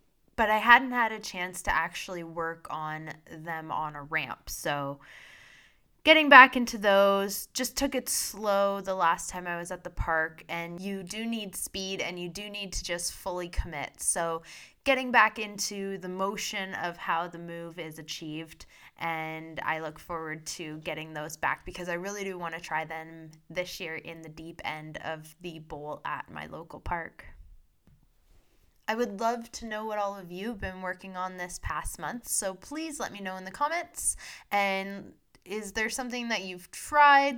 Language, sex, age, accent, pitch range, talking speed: English, female, 20-39, American, 170-220 Hz, 185 wpm